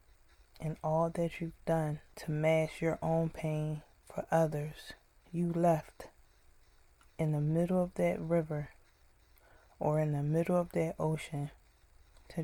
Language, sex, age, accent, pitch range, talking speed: English, female, 20-39, American, 110-165 Hz, 135 wpm